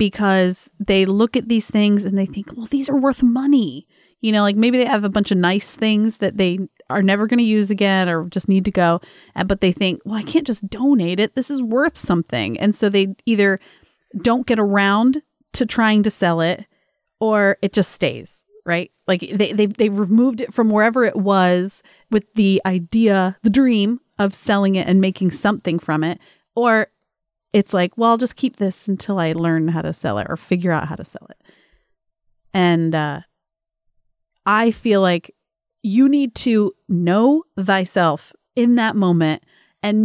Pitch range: 185-235 Hz